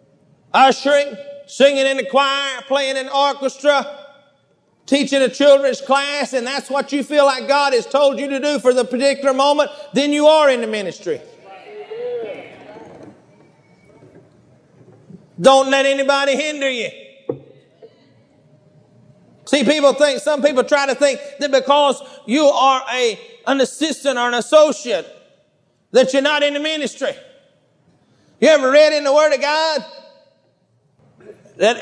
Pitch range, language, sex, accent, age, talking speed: 230-295 Hz, English, male, American, 40-59, 135 wpm